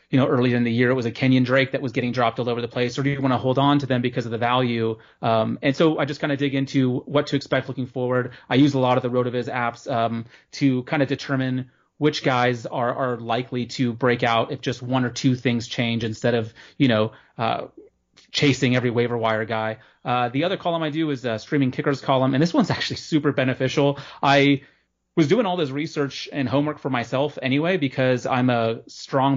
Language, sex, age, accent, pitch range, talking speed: English, male, 30-49, American, 125-145 Hz, 235 wpm